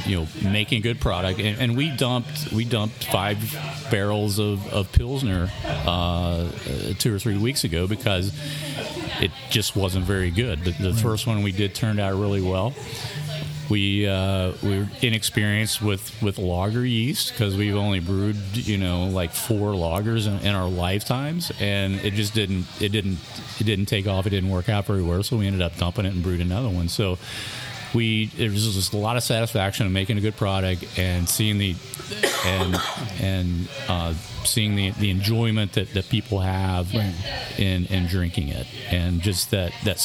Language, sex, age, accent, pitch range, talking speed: English, male, 40-59, American, 95-115 Hz, 180 wpm